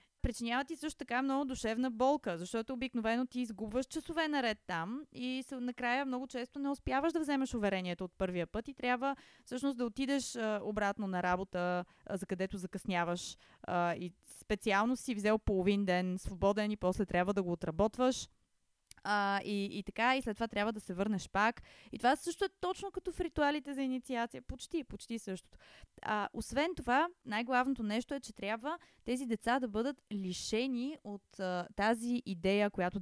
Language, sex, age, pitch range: Bulgarian, female, 20-39, 190-260 Hz